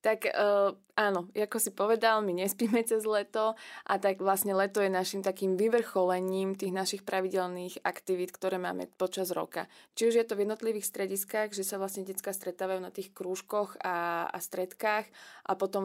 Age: 20-39